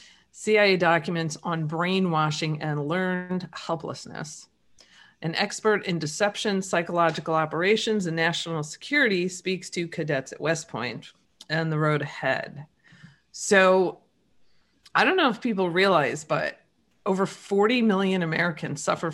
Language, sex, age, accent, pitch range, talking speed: English, female, 40-59, American, 155-200 Hz, 120 wpm